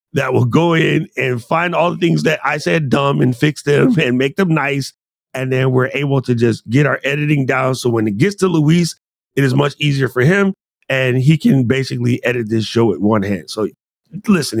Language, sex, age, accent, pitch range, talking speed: English, male, 40-59, American, 115-155 Hz, 220 wpm